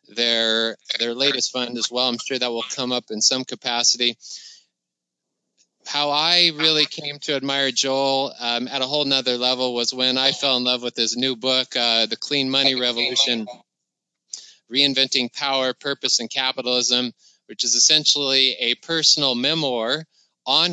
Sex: male